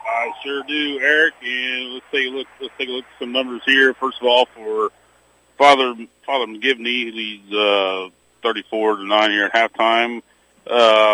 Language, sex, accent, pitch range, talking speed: English, male, American, 115-140 Hz, 180 wpm